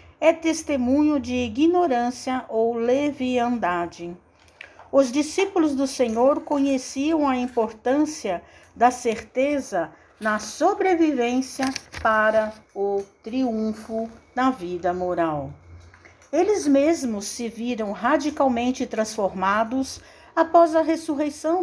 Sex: female